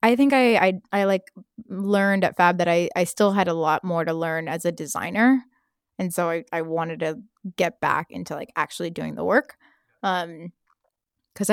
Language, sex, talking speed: English, female, 195 wpm